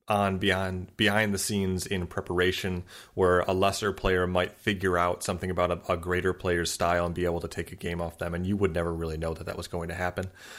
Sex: male